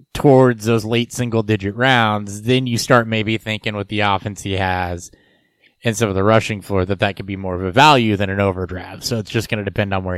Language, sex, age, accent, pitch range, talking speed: English, male, 20-39, American, 105-125 Hz, 235 wpm